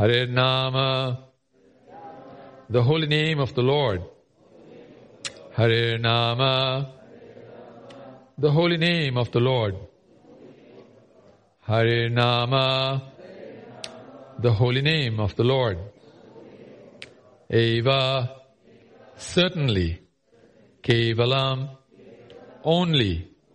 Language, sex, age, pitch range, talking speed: English, male, 50-69, 115-135 Hz, 75 wpm